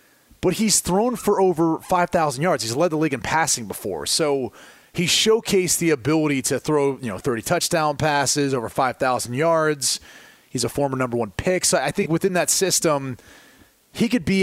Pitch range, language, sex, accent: 135-175 Hz, English, male, American